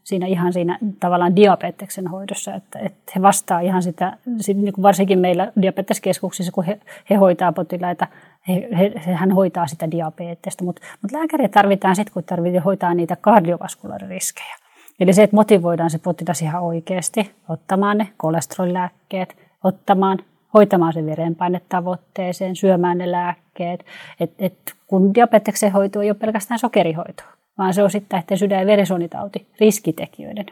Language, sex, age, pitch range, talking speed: Finnish, female, 30-49, 180-205 Hz, 145 wpm